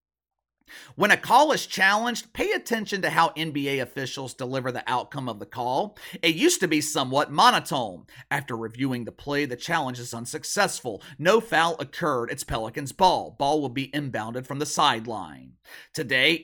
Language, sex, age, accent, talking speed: English, male, 40-59, American, 165 wpm